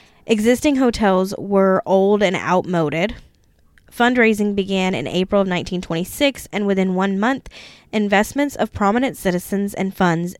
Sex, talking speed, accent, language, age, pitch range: female, 125 wpm, American, English, 10-29, 185-230 Hz